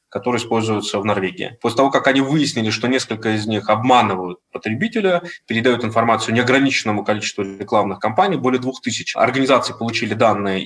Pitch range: 110-135 Hz